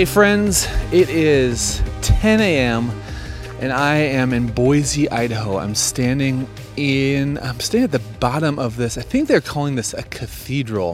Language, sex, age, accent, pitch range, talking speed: English, male, 30-49, American, 115-165 Hz, 160 wpm